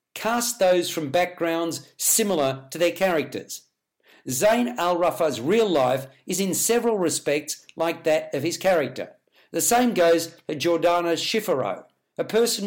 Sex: male